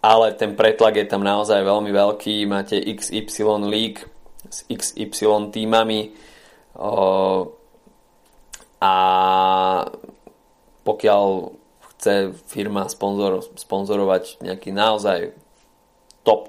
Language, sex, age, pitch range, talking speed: Slovak, male, 20-39, 95-100 Hz, 85 wpm